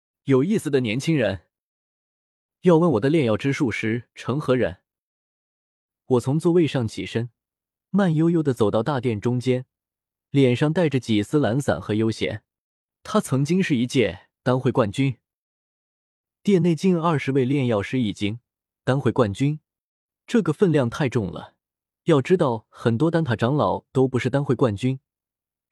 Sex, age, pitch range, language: male, 20-39, 115-160 Hz, Chinese